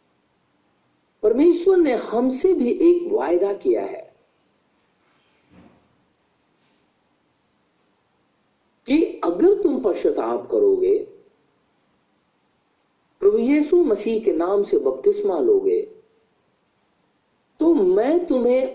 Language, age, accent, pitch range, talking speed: Hindi, 50-69, native, 330-415 Hz, 80 wpm